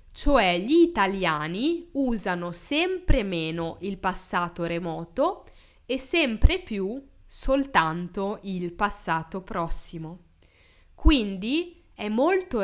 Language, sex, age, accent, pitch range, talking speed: Italian, female, 10-29, native, 175-255 Hz, 90 wpm